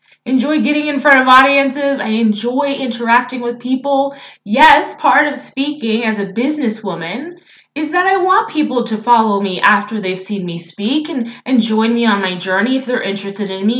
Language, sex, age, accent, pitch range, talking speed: English, female, 20-39, American, 205-280 Hz, 185 wpm